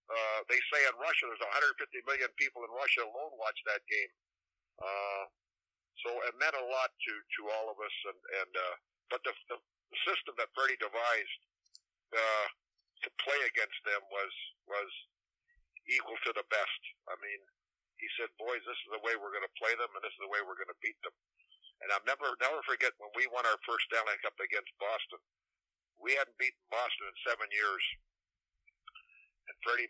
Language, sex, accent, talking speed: English, male, American, 190 wpm